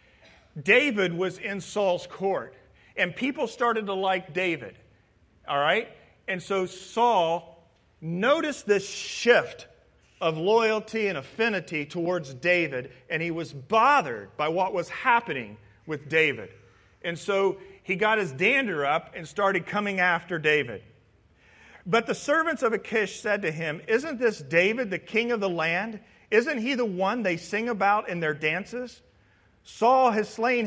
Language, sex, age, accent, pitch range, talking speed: English, male, 40-59, American, 165-235 Hz, 150 wpm